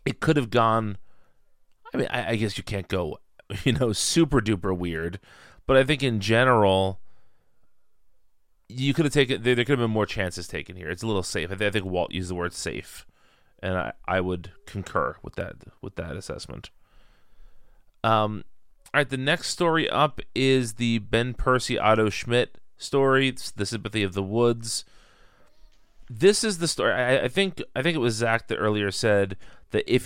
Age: 30-49